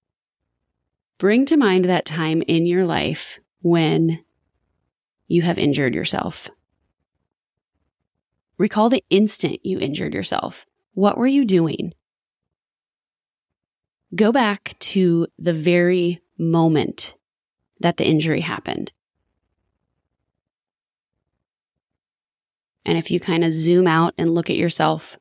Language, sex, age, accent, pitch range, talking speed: English, female, 20-39, American, 160-195 Hz, 105 wpm